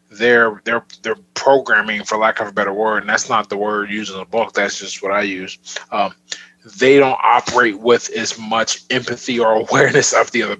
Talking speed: 210 wpm